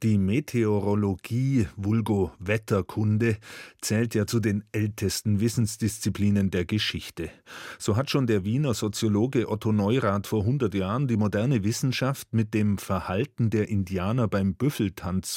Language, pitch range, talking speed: German, 100-120 Hz, 130 wpm